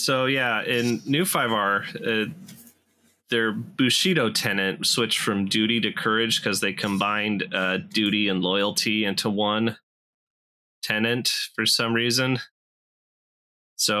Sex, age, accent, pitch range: male, 20-39, American, 105-130 Hz